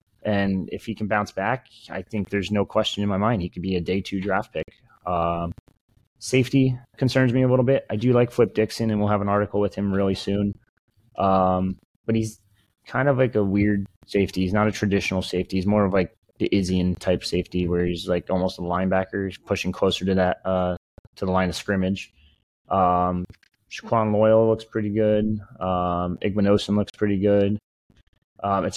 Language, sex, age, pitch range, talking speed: English, male, 20-39, 95-115 Hz, 195 wpm